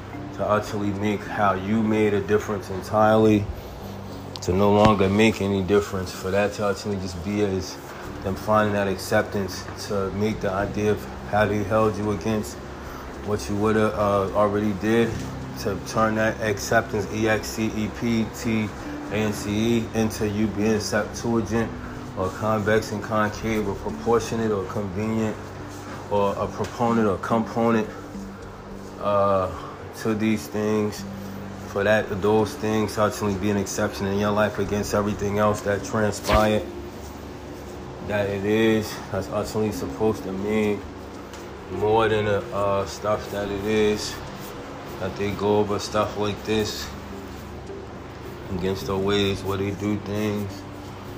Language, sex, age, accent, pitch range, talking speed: English, male, 20-39, American, 95-105 Hz, 135 wpm